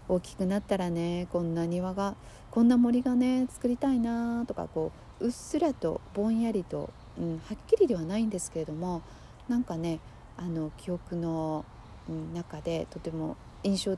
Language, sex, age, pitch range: Japanese, female, 40-59, 165-215 Hz